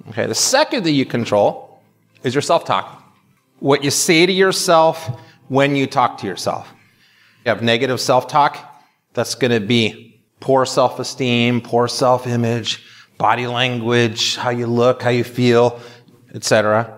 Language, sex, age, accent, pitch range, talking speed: English, male, 30-49, American, 115-150 Hz, 150 wpm